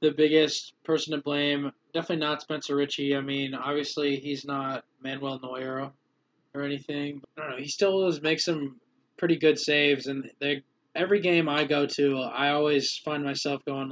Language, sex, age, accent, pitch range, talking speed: English, male, 20-39, American, 135-155 Hz, 175 wpm